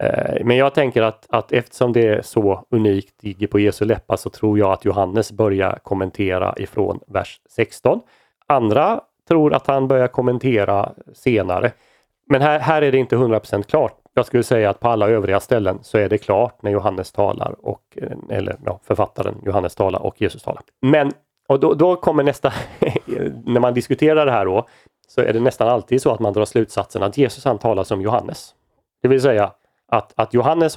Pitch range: 100-130 Hz